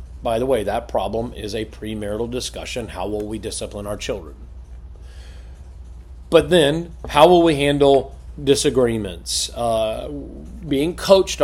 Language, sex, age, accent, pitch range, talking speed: English, male, 40-59, American, 105-155 Hz, 130 wpm